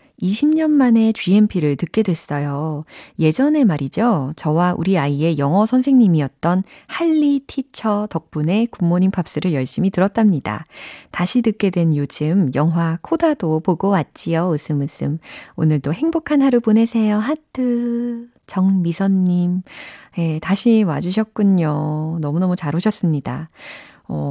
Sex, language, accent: female, Korean, native